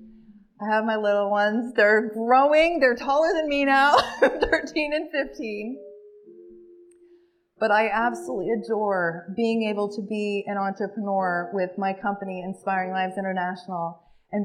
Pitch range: 200-250 Hz